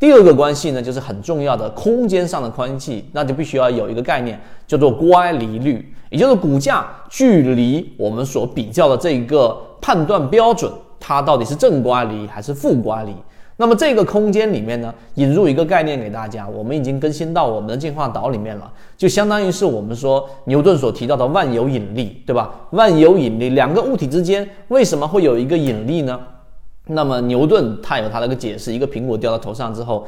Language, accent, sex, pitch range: Chinese, native, male, 115-165 Hz